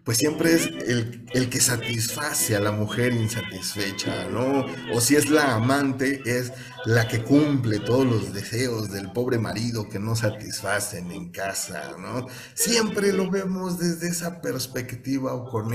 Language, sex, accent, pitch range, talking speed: Spanish, male, Mexican, 105-125 Hz, 155 wpm